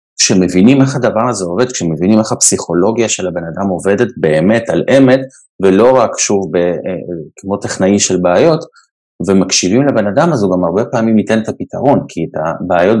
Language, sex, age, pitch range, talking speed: Hebrew, male, 30-49, 90-110 Hz, 165 wpm